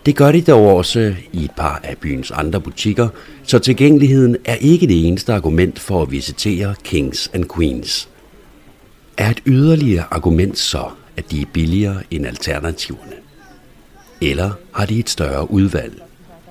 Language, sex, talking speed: Danish, male, 155 wpm